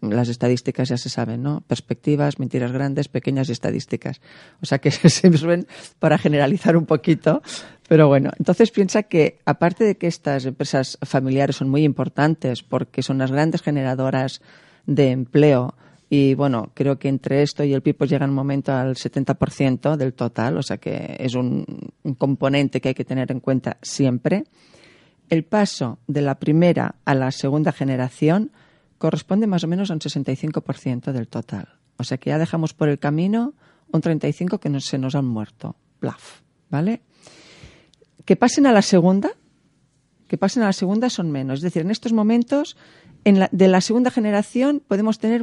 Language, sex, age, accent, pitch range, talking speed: Spanish, female, 40-59, Spanish, 135-190 Hz, 175 wpm